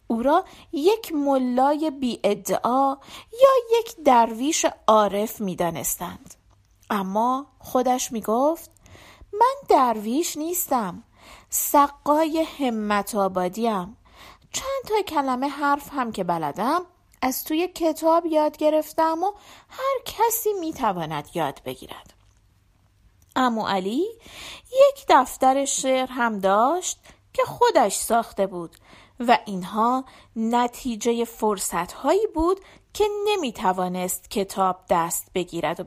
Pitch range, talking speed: 210-320 Hz, 105 wpm